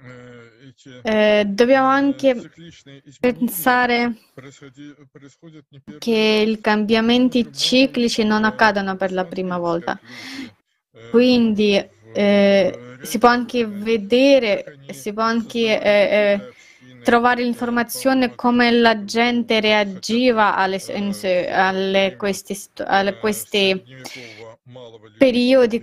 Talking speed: 80 wpm